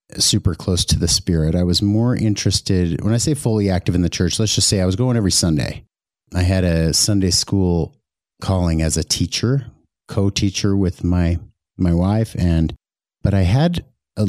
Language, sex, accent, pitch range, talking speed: English, male, American, 85-105 Hz, 185 wpm